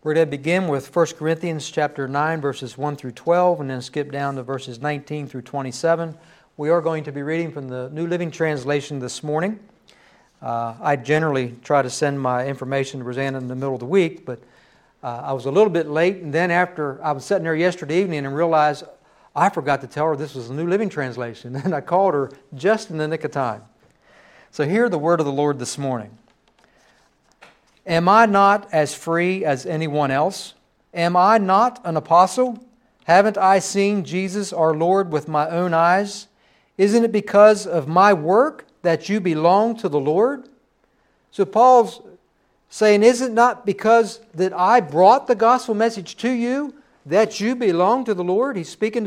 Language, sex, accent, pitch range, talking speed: English, male, American, 145-205 Hz, 195 wpm